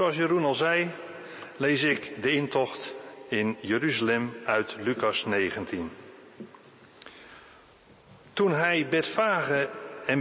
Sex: male